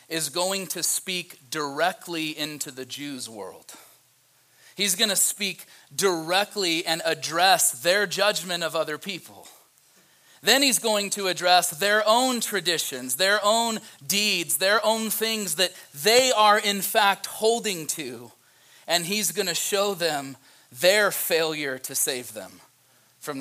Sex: male